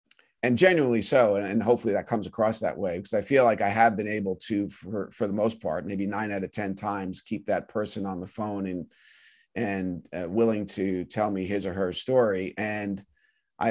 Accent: American